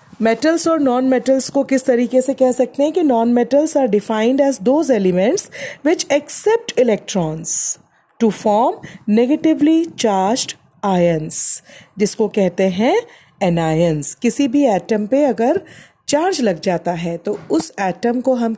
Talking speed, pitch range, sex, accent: 140 wpm, 200-275 Hz, female, Indian